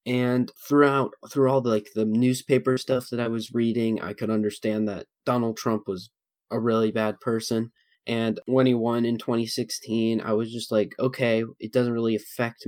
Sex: male